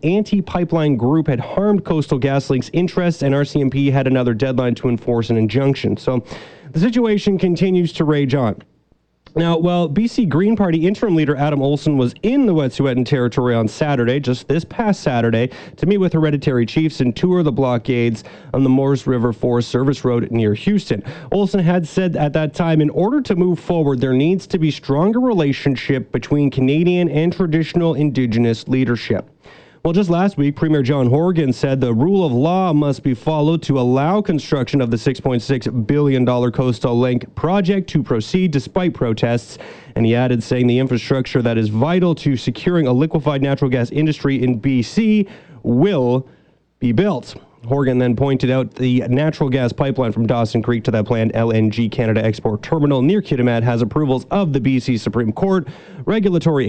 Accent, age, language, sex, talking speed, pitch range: American, 30-49, English, male, 170 wpm, 125-165 Hz